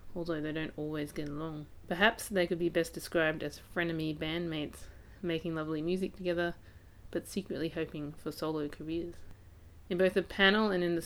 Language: English